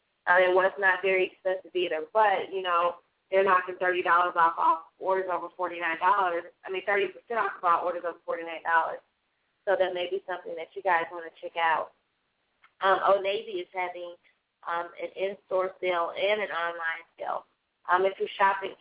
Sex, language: female, English